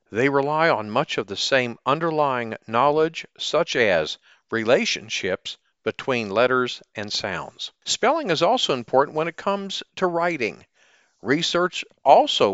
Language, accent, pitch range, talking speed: English, American, 110-160 Hz, 130 wpm